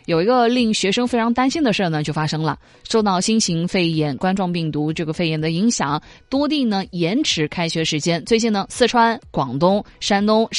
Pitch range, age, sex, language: 165-240 Hz, 20-39, female, Chinese